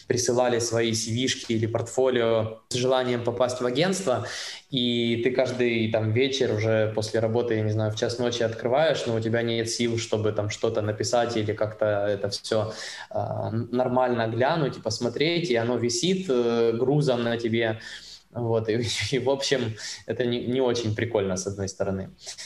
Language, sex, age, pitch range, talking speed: Ukrainian, male, 20-39, 115-150 Hz, 170 wpm